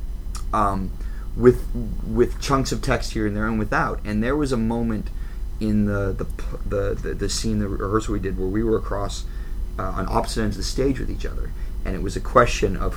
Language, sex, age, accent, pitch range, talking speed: English, male, 30-49, American, 85-105 Hz, 215 wpm